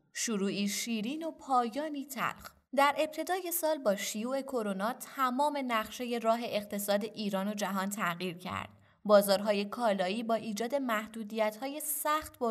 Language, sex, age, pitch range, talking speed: Persian, female, 20-39, 195-265 Hz, 130 wpm